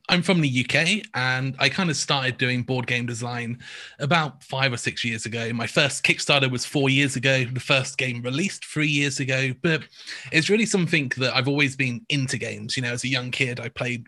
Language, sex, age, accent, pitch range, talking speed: English, male, 30-49, British, 125-145 Hz, 215 wpm